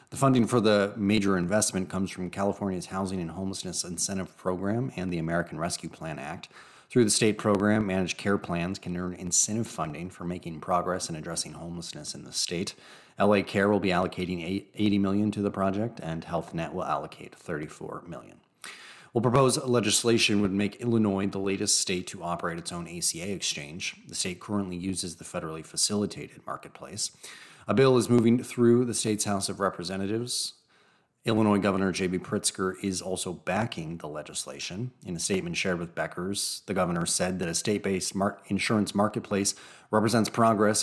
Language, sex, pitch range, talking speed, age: English, male, 90-105 Hz, 170 wpm, 30-49